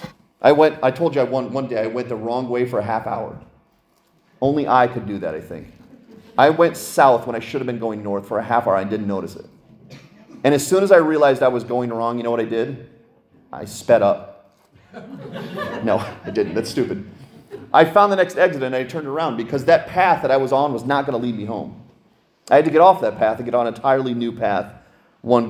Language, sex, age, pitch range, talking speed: English, male, 30-49, 115-160 Hz, 240 wpm